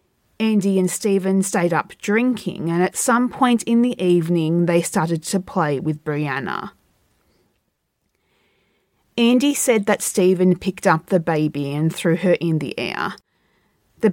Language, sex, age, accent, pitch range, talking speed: English, female, 30-49, Australian, 170-215 Hz, 145 wpm